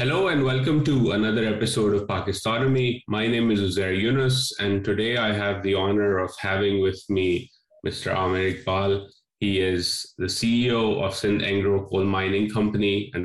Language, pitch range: English, 95-110 Hz